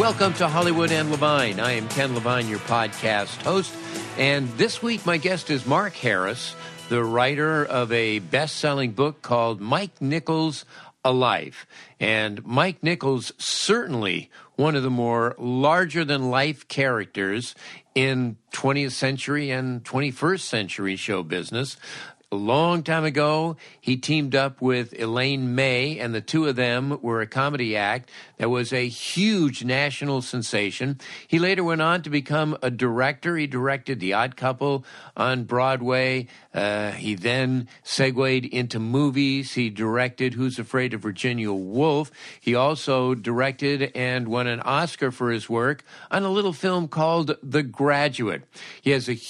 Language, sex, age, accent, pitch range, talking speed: English, male, 50-69, American, 120-150 Hz, 150 wpm